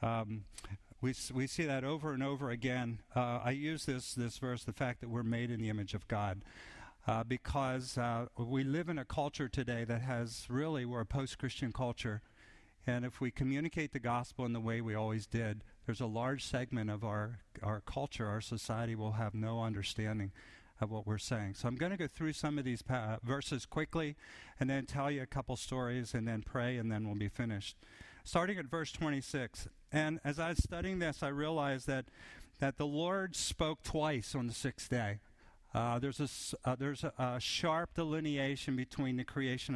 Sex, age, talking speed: male, 50-69, 200 wpm